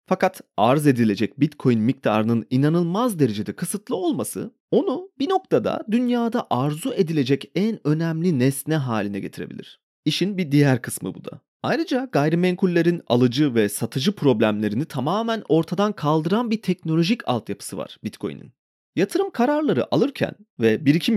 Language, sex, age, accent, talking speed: Turkish, male, 40-59, native, 130 wpm